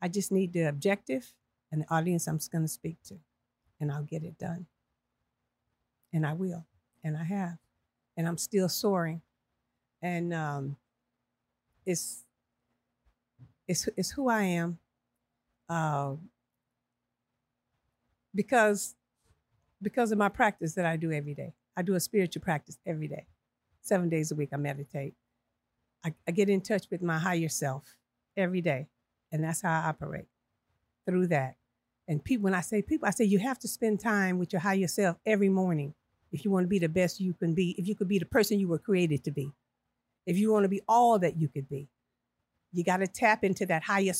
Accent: American